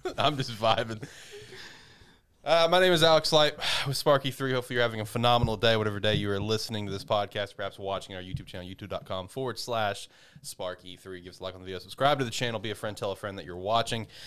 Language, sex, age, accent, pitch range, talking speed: English, male, 20-39, American, 100-130 Hz, 225 wpm